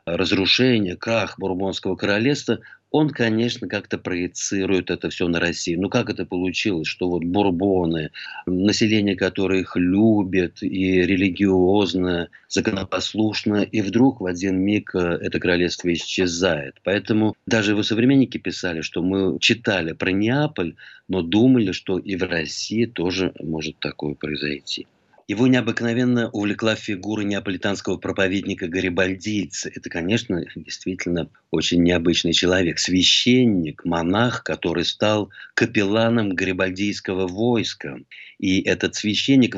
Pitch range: 90-110 Hz